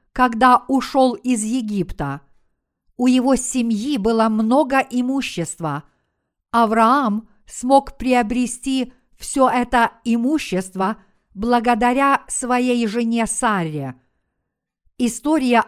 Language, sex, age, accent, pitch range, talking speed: Russian, female, 50-69, native, 210-255 Hz, 80 wpm